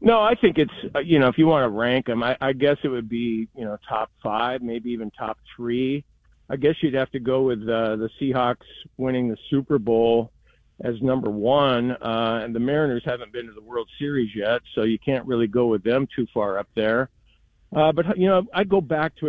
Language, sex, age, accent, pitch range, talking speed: English, male, 50-69, American, 115-145 Hz, 225 wpm